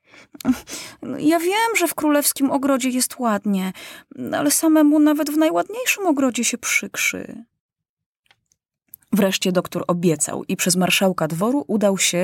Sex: female